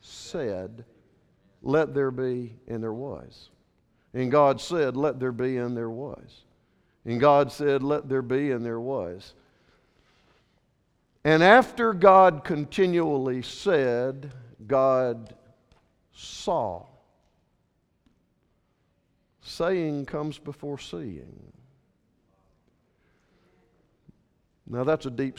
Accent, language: American, English